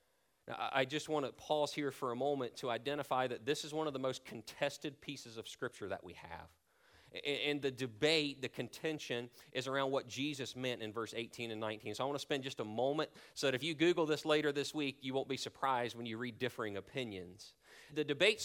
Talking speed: 220 wpm